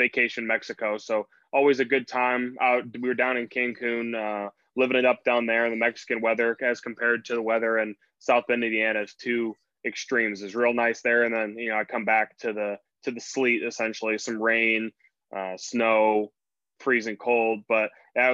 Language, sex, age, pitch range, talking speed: English, male, 20-39, 115-130 Hz, 205 wpm